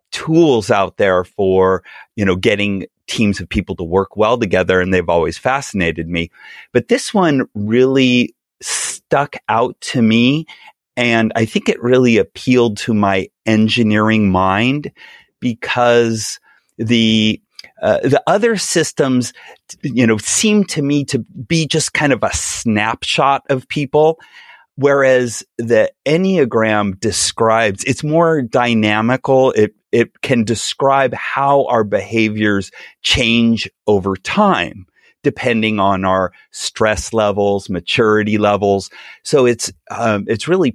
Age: 30-49